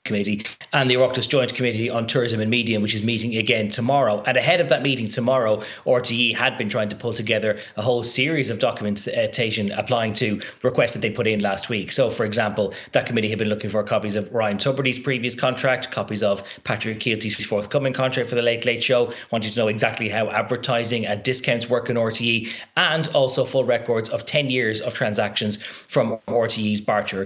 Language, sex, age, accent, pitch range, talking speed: English, male, 30-49, Irish, 110-135 Hz, 200 wpm